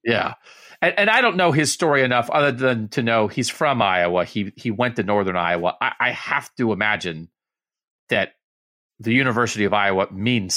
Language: English